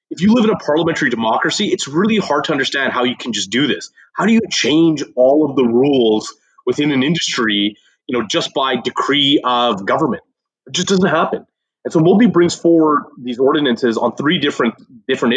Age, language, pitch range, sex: 30-49, English, 130-195 Hz, male